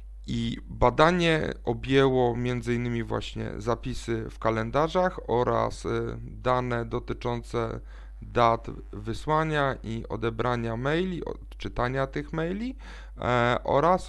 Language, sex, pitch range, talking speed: Polish, male, 110-130 Hz, 90 wpm